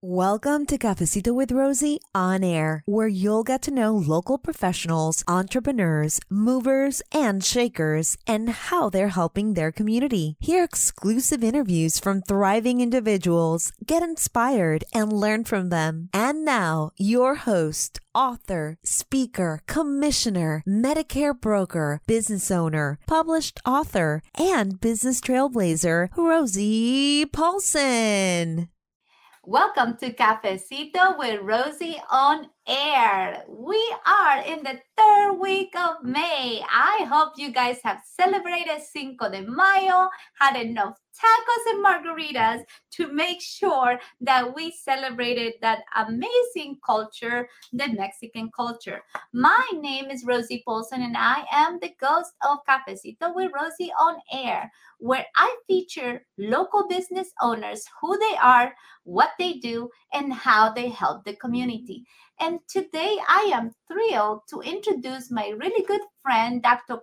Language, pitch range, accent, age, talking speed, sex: English, 215-320 Hz, American, 30-49, 125 wpm, female